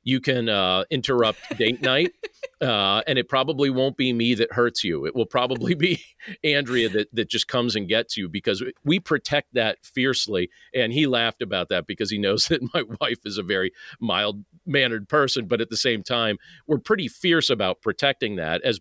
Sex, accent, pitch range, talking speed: male, American, 110-145 Hz, 200 wpm